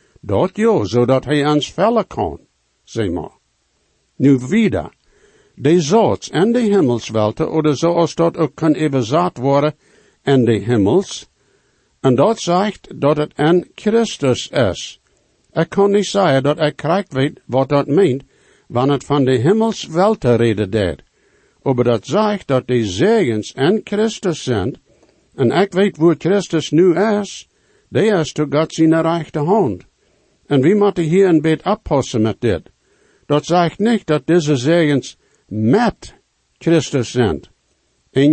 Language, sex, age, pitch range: English, male, 60-79, 135-180 Hz